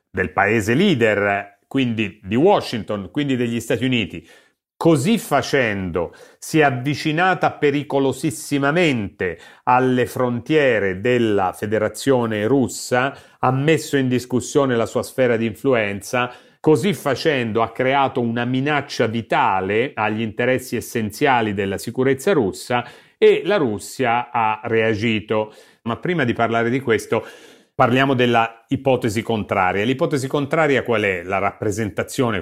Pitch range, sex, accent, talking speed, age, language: 100-130 Hz, male, native, 120 wpm, 40-59, Italian